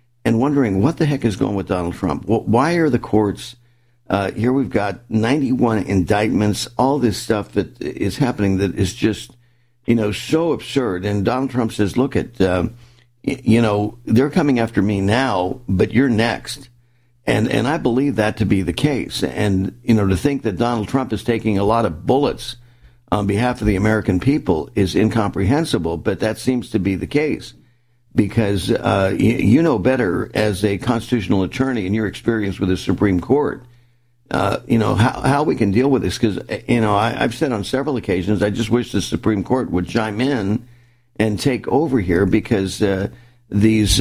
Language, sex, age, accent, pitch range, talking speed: English, male, 50-69, American, 100-120 Hz, 190 wpm